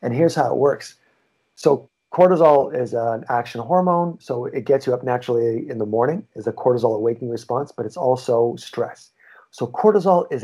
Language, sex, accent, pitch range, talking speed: English, male, American, 120-155 Hz, 185 wpm